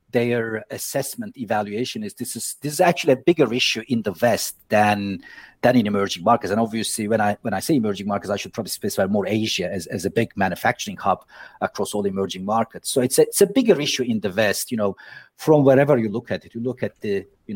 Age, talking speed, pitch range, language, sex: 50-69, 235 wpm, 120-165 Hz, English, male